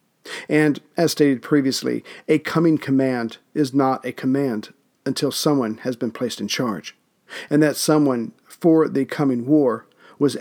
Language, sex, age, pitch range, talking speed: English, male, 50-69, 130-150 Hz, 150 wpm